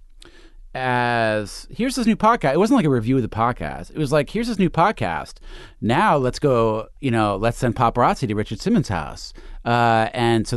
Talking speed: 200 wpm